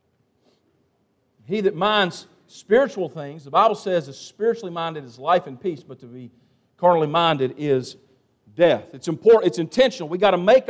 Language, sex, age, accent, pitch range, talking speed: English, male, 50-69, American, 205-250 Hz, 170 wpm